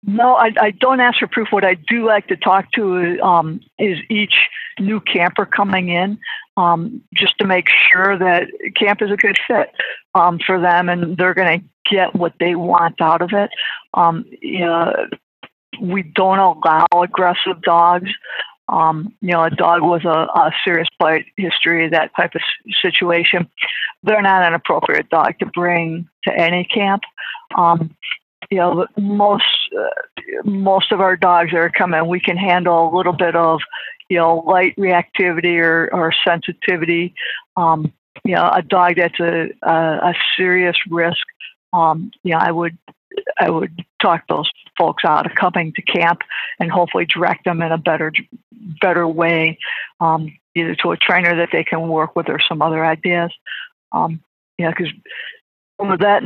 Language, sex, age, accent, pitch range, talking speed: English, female, 50-69, American, 170-200 Hz, 170 wpm